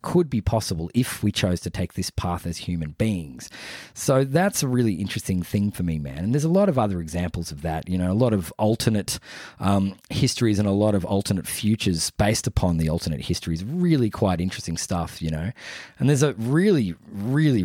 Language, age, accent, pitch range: English, 20-39, Australian, 90-125 Hz